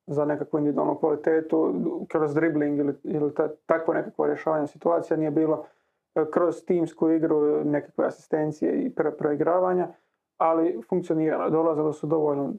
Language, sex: Croatian, male